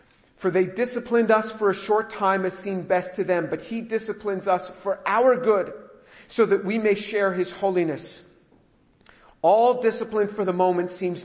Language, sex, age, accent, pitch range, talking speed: English, male, 50-69, American, 170-215 Hz, 175 wpm